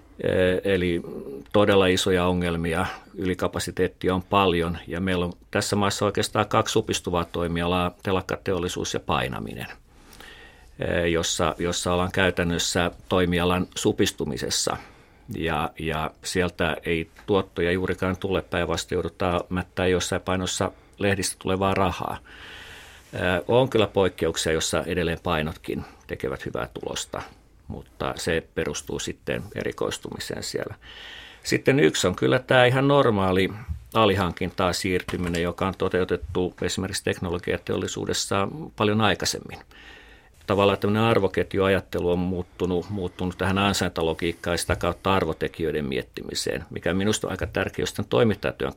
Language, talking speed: Finnish, 110 wpm